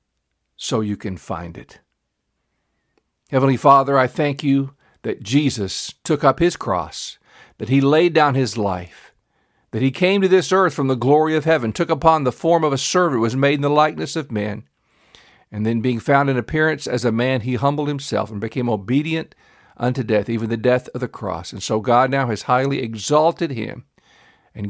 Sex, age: male, 50-69